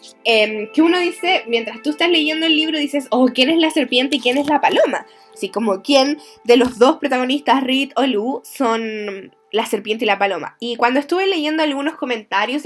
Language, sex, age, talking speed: Spanish, female, 10-29, 200 wpm